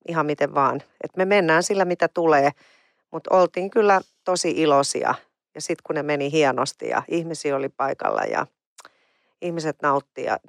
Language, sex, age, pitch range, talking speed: Finnish, female, 40-59, 145-180 Hz, 155 wpm